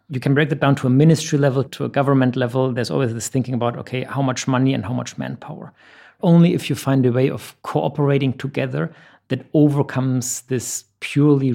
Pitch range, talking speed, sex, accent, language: 120-140 Hz, 205 wpm, male, German, English